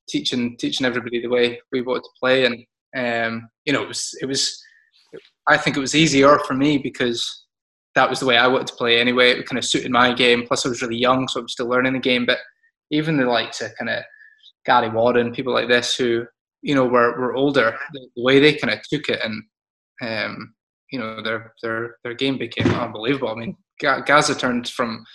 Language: English